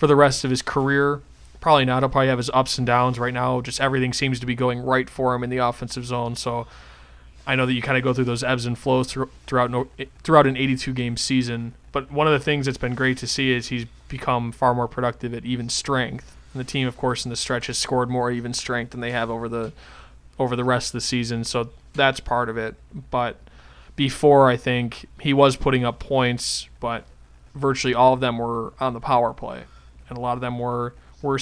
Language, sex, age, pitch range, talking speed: English, male, 20-39, 120-130 Hz, 235 wpm